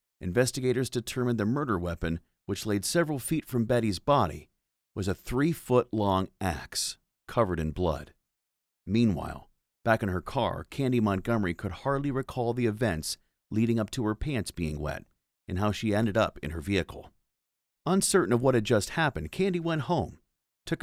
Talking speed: 160 wpm